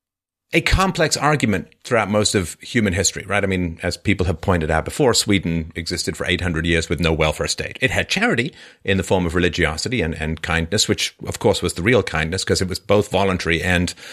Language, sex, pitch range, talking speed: English, male, 90-120 Hz, 210 wpm